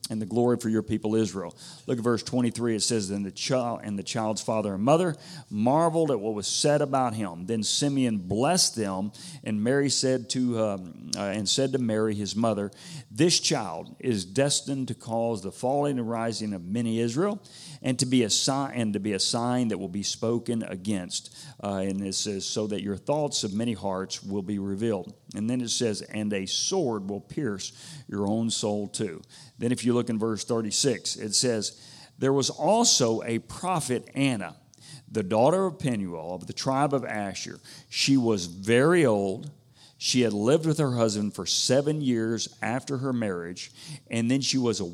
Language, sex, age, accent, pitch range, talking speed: English, male, 50-69, American, 105-135 Hz, 195 wpm